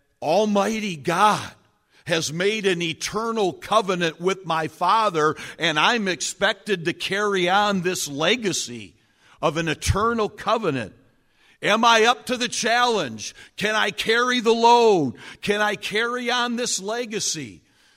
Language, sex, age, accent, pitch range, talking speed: English, male, 60-79, American, 125-205 Hz, 130 wpm